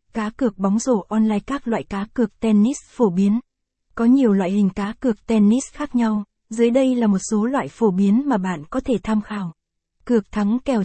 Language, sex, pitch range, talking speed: Vietnamese, female, 205-235 Hz, 210 wpm